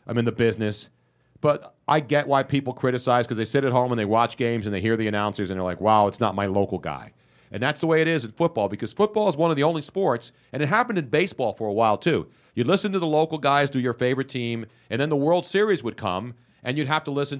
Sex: male